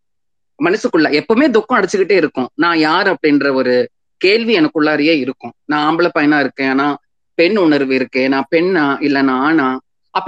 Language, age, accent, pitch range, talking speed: Tamil, 30-49, native, 155-240 Hz, 160 wpm